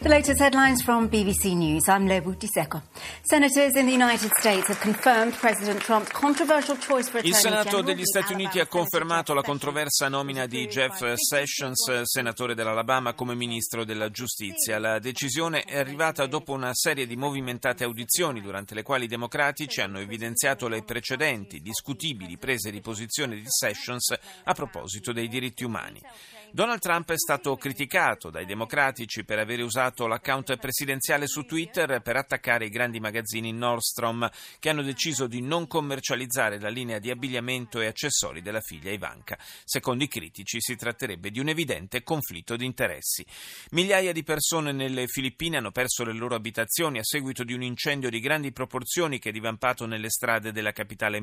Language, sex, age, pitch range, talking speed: Italian, male, 40-59, 115-160 Hz, 140 wpm